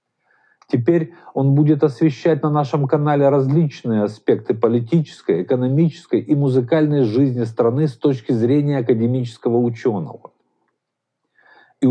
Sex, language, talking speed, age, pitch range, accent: male, Russian, 105 wpm, 50-69, 125-155 Hz, native